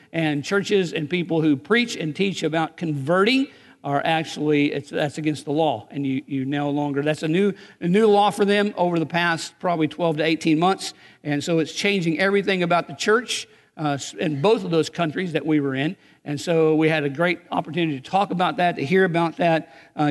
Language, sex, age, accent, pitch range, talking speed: English, male, 50-69, American, 150-180 Hz, 215 wpm